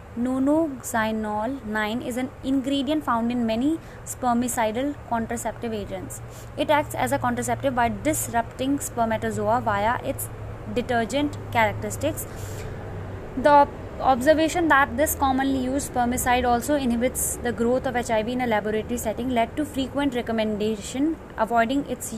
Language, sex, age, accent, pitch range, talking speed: English, female, 20-39, Indian, 225-270 Hz, 125 wpm